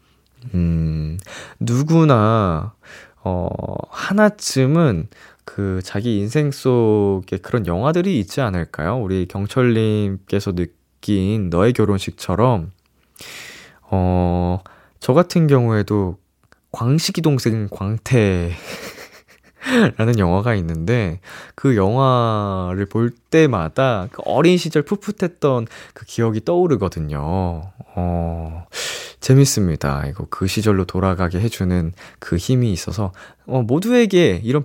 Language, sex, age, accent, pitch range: Korean, male, 20-39, native, 95-140 Hz